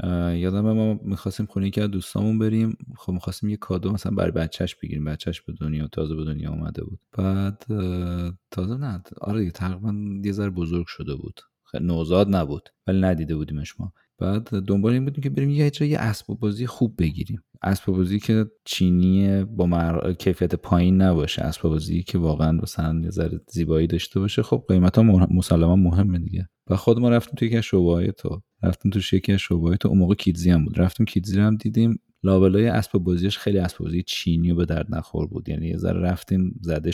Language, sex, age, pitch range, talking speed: Persian, male, 30-49, 85-100 Hz, 185 wpm